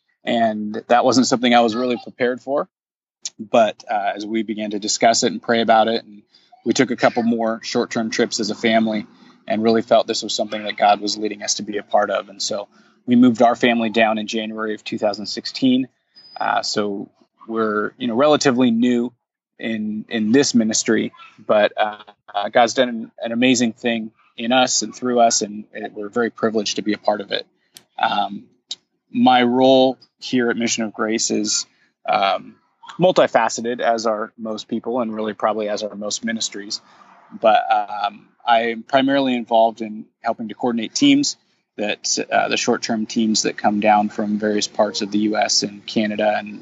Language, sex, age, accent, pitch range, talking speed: English, male, 20-39, American, 105-120 Hz, 190 wpm